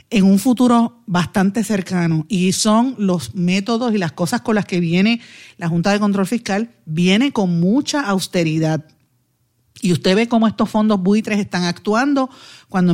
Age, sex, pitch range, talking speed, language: 50-69, female, 175-220 Hz, 160 wpm, Spanish